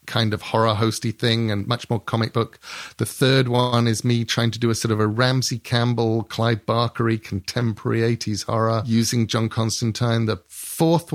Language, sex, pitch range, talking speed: English, male, 110-130 Hz, 185 wpm